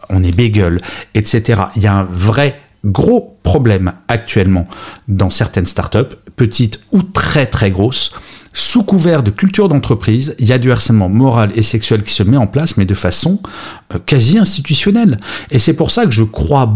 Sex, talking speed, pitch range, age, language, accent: male, 180 wpm, 100-135 Hz, 40-59, French, French